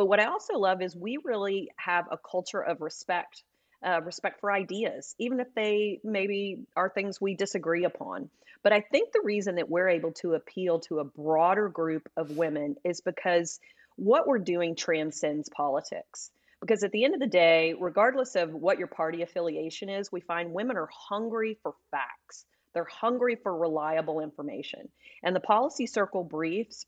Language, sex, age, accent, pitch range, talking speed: English, female, 30-49, American, 165-215 Hz, 180 wpm